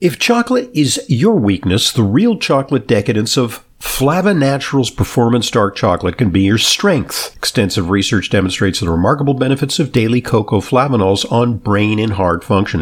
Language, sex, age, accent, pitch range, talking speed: English, male, 50-69, American, 105-140 Hz, 160 wpm